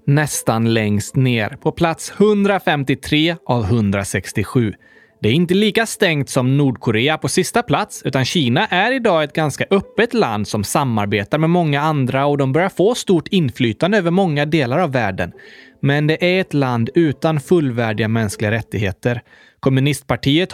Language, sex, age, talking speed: Swedish, male, 20-39, 150 wpm